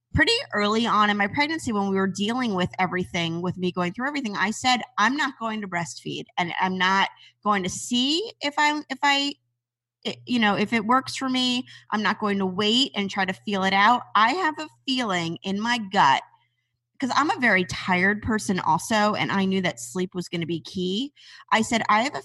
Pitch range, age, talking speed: 180-230 Hz, 30-49, 220 wpm